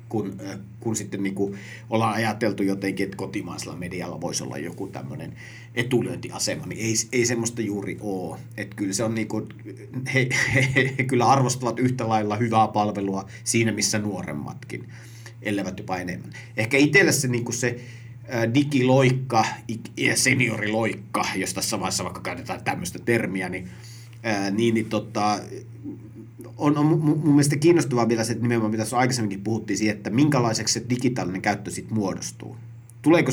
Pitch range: 105-125 Hz